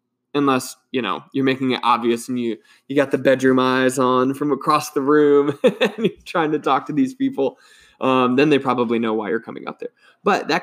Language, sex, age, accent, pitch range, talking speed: English, male, 20-39, American, 125-145 Hz, 220 wpm